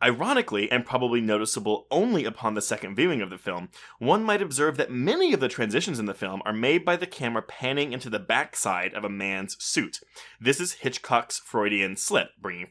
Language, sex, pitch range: English, male, 110-145 Hz